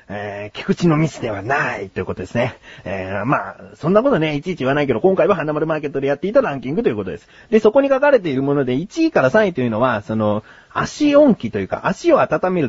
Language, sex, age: Japanese, male, 30-49